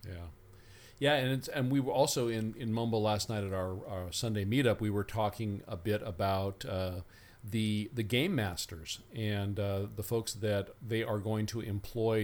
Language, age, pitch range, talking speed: English, 40-59, 100-115 Hz, 190 wpm